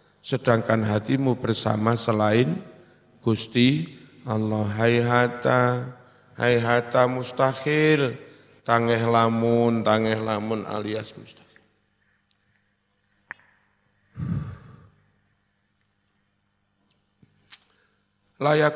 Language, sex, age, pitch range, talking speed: Indonesian, male, 50-69, 110-120 Hz, 60 wpm